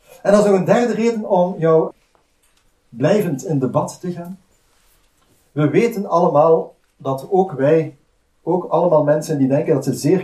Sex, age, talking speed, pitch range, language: male, 40-59, 165 wpm, 140-175 Hz, Dutch